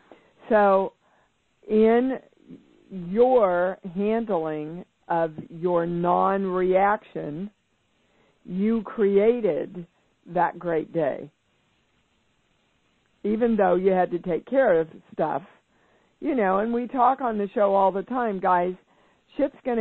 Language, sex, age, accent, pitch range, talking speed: English, female, 50-69, American, 180-220 Hz, 105 wpm